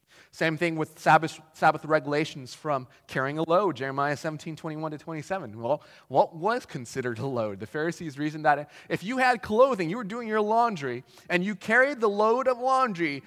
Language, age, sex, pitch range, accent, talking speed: English, 30-49, male, 130-185 Hz, American, 185 wpm